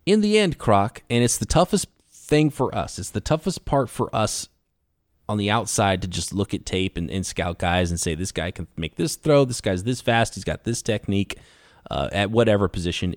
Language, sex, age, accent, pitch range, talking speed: English, male, 30-49, American, 90-120 Hz, 225 wpm